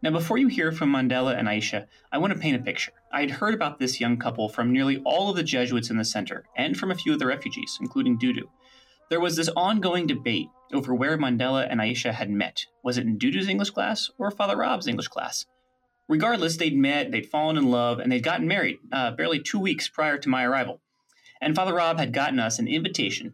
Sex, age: male, 30-49